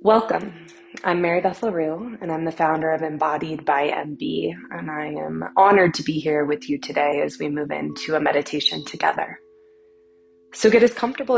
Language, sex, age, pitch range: English, female, 20-39, 135-205 Hz